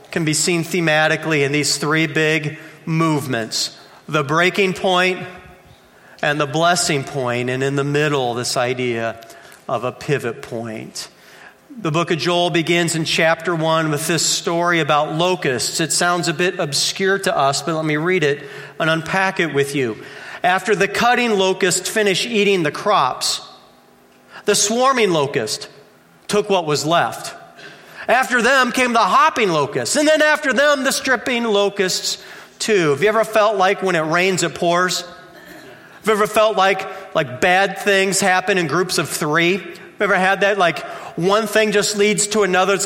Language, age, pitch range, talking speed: English, 40-59, 160-225 Hz, 170 wpm